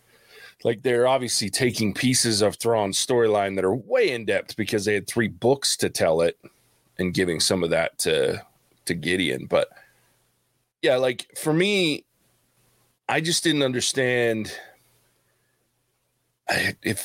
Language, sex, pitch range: English, male, 100-135 Hz